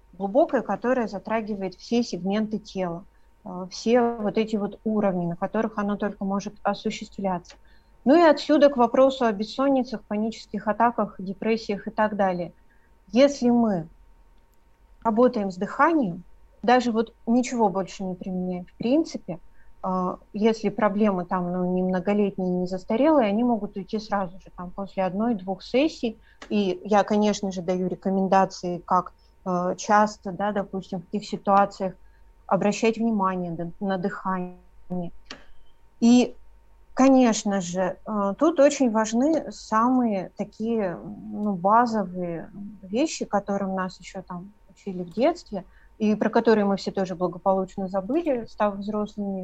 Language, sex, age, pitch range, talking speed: Russian, female, 30-49, 190-225 Hz, 125 wpm